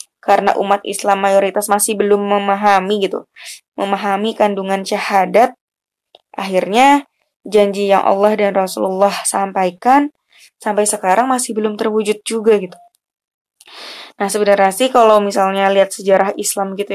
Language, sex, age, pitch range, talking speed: Indonesian, female, 20-39, 200-255 Hz, 120 wpm